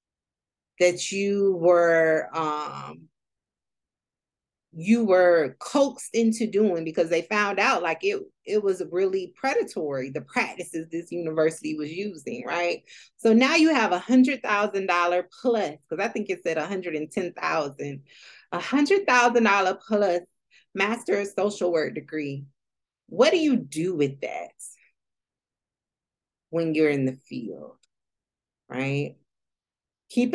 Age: 30-49